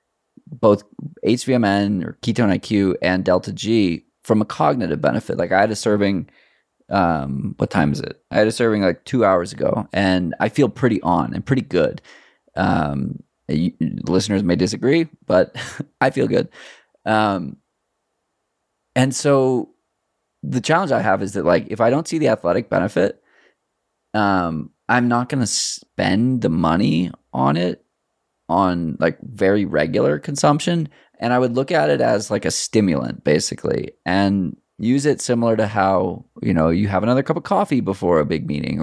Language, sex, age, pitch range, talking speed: English, male, 20-39, 95-120 Hz, 165 wpm